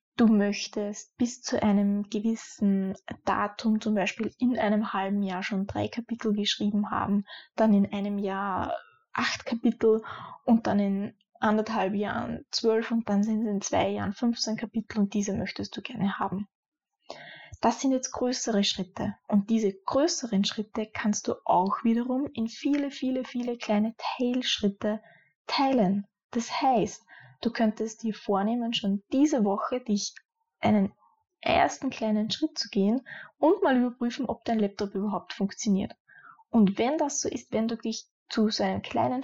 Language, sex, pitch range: German, female, 205-250 Hz